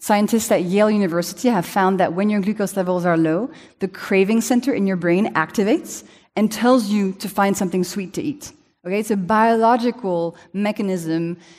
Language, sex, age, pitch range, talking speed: English, female, 30-49, 180-230 Hz, 175 wpm